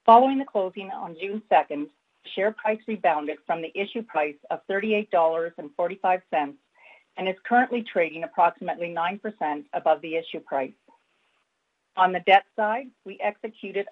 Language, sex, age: English, female, 50-69